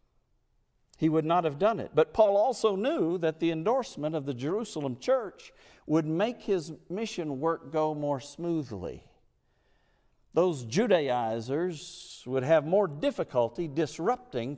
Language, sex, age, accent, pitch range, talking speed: English, male, 50-69, American, 130-180 Hz, 130 wpm